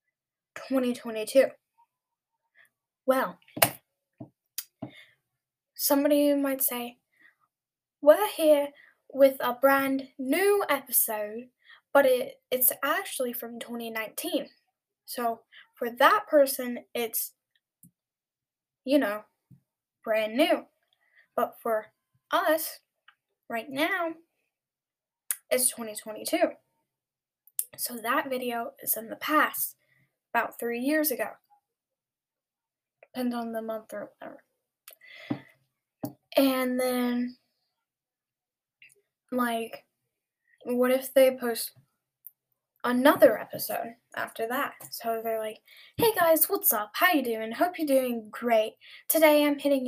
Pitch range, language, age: 230-305 Hz, English, 10-29